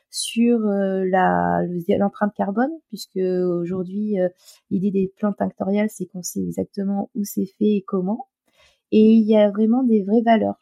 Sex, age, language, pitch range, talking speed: female, 30-49, French, 195-225 Hz, 165 wpm